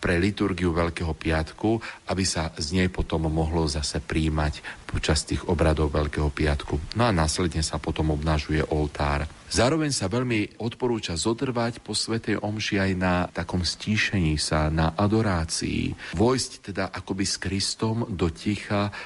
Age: 40-59